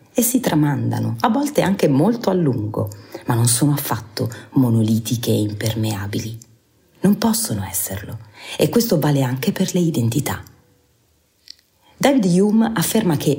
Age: 30-49